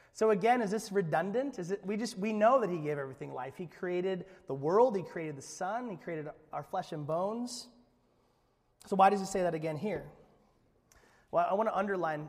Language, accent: English, American